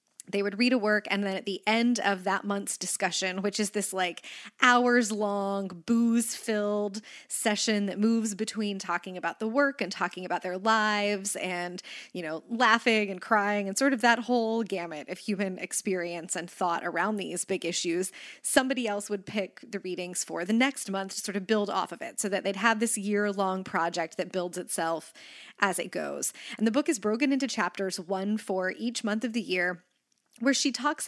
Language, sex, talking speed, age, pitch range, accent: English, female, 195 wpm, 20-39, 190-230 Hz, American